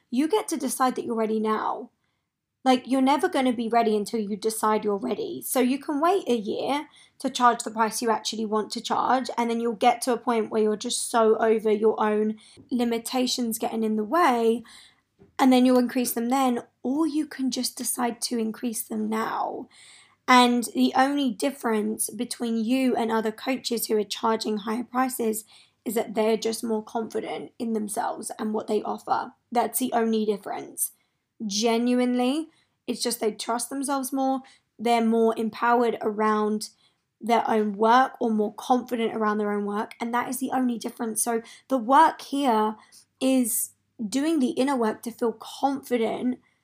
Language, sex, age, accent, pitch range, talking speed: English, female, 20-39, British, 225-255 Hz, 180 wpm